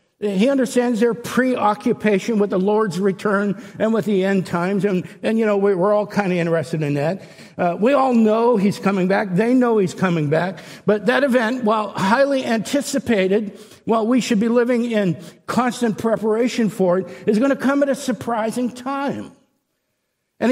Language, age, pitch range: English, 60-79, 180-235 Hz